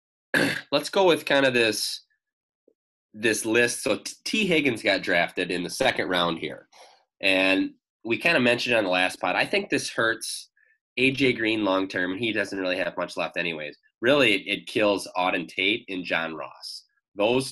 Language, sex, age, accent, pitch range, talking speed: English, male, 20-39, American, 95-140 Hz, 175 wpm